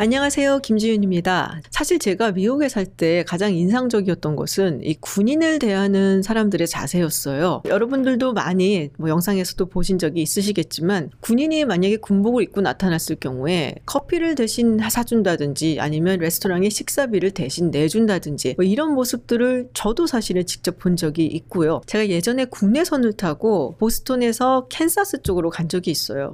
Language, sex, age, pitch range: Korean, female, 40-59, 170-235 Hz